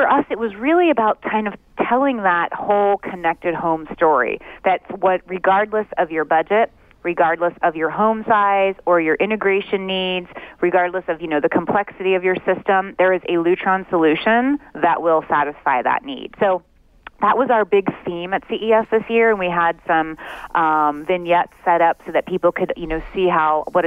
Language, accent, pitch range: English, American, 165-200 Hz